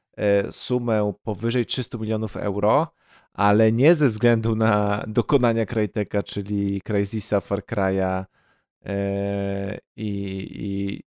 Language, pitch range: Polish, 105-120 Hz